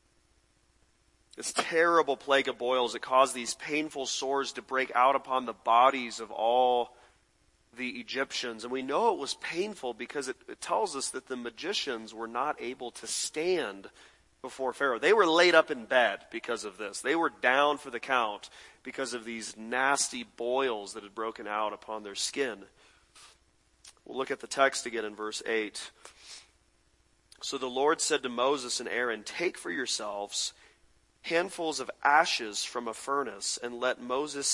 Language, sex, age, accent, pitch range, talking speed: English, male, 30-49, American, 110-135 Hz, 170 wpm